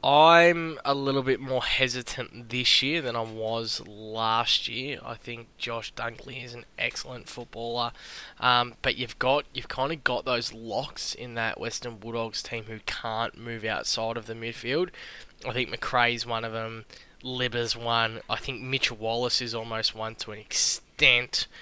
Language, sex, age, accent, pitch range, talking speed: English, male, 10-29, Australian, 115-125 Hz, 170 wpm